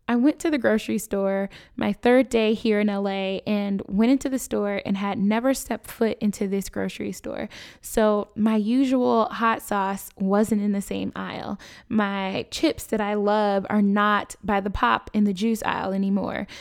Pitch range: 200-230 Hz